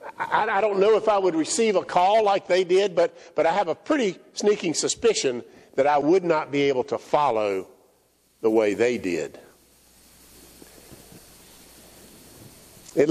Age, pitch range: 50-69, 145-235 Hz